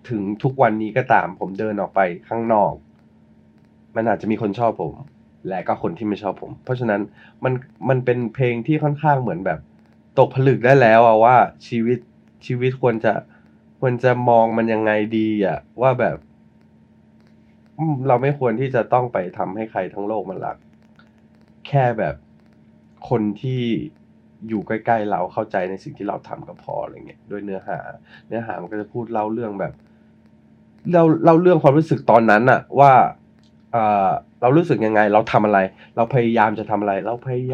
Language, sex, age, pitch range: Thai, male, 20-39, 100-125 Hz